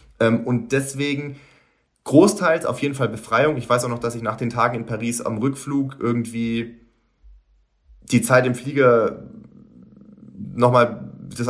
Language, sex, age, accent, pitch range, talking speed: German, male, 30-49, German, 115-140 Hz, 140 wpm